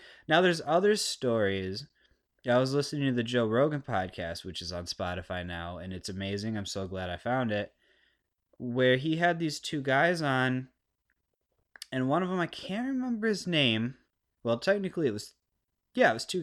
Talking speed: 185 wpm